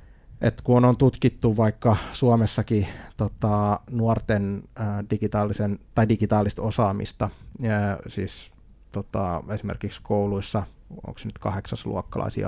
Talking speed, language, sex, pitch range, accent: 100 wpm, Finnish, male, 100-115 Hz, native